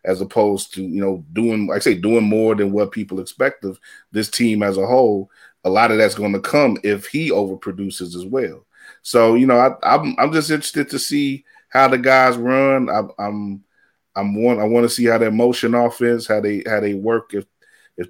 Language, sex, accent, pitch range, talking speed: English, male, American, 100-120 Hz, 220 wpm